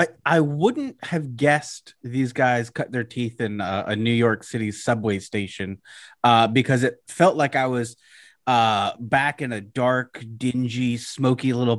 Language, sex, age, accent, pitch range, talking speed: English, male, 30-49, American, 115-150 Hz, 170 wpm